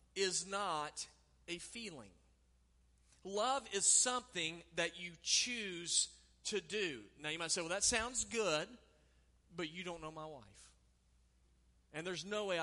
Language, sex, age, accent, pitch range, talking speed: English, male, 40-59, American, 140-220 Hz, 145 wpm